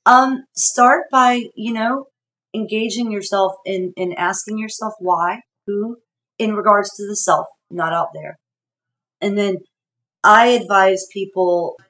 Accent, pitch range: American, 160-210 Hz